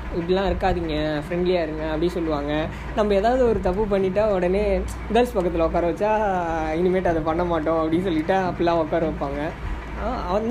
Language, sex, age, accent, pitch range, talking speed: Tamil, female, 20-39, native, 155-205 Hz, 150 wpm